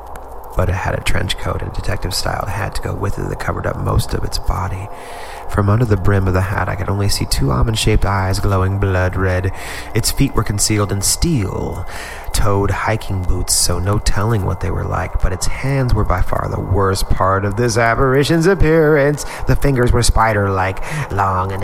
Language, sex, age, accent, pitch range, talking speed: English, male, 30-49, American, 95-115 Hz, 200 wpm